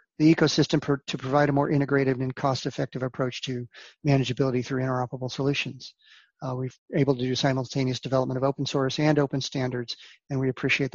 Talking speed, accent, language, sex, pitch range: 170 wpm, American, English, male, 130-150 Hz